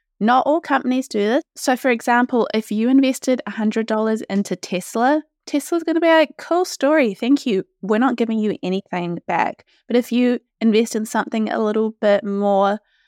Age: 20-39